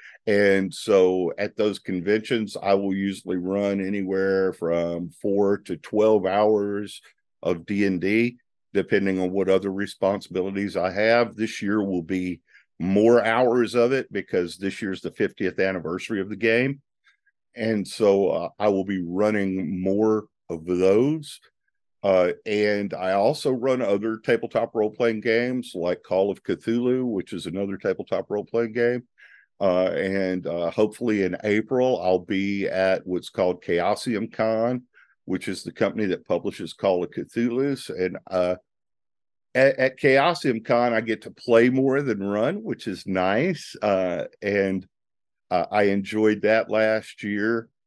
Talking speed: 150 wpm